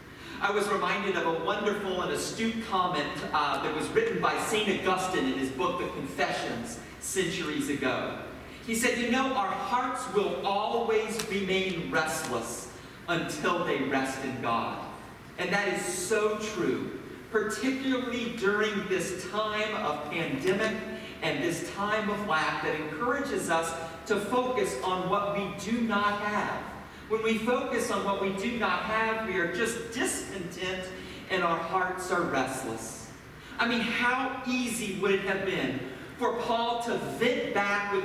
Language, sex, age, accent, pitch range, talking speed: English, male, 40-59, American, 165-215 Hz, 155 wpm